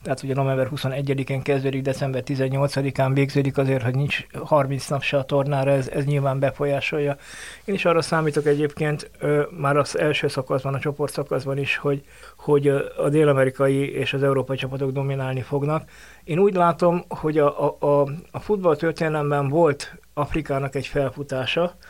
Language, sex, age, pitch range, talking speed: Hungarian, male, 20-39, 135-150 Hz, 155 wpm